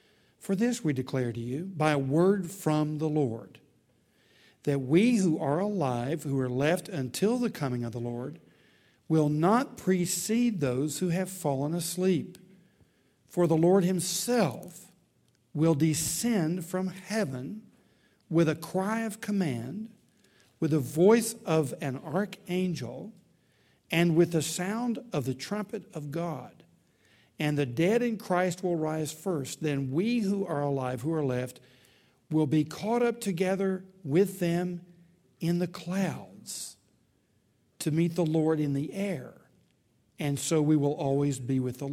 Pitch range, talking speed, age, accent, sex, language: 140-185 Hz, 145 wpm, 60-79, American, male, English